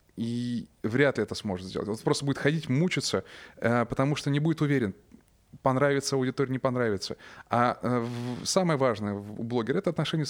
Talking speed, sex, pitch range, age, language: 155 wpm, male, 110-140 Hz, 20-39, Russian